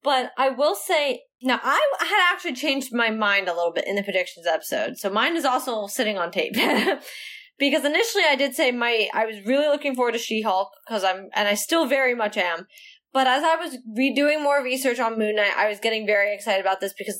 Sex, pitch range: female, 205-270 Hz